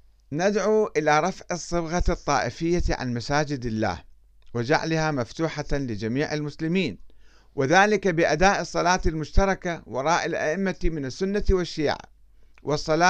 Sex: male